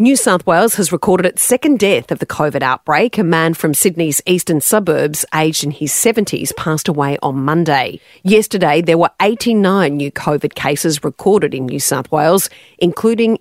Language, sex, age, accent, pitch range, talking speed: English, female, 40-59, Australian, 150-215 Hz, 175 wpm